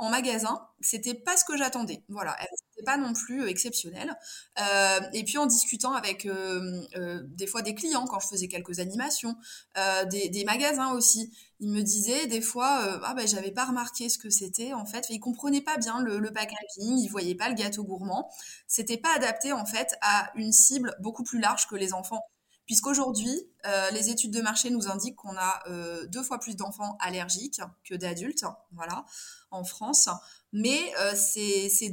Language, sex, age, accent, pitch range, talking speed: French, female, 20-39, French, 190-245 Hz, 195 wpm